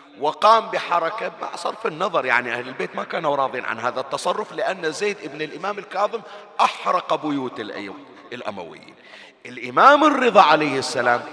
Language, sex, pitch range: Arabic, male, 150-215 Hz